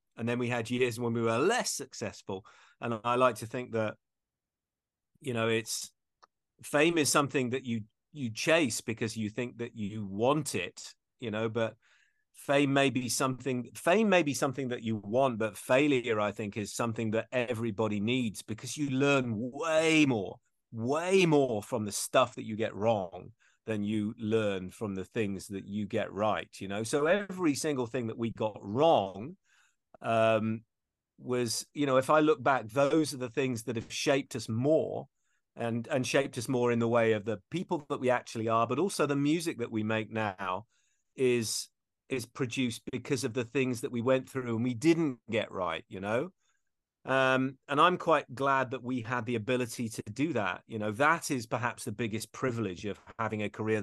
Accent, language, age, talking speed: British, English, 30-49, 195 wpm